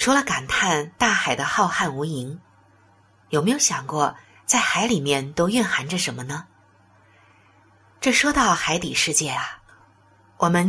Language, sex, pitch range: Chinese, female, 135-220 Hz